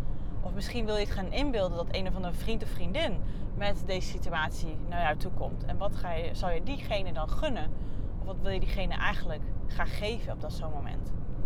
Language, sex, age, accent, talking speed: Dutch, female, 30-49, Dutch, 220 wpm